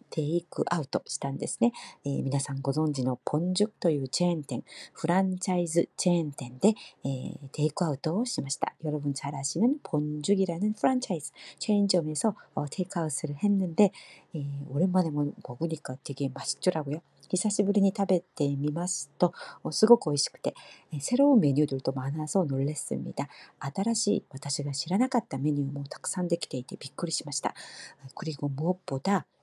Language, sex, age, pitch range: Korean, female, 40-59, 145-200 Hz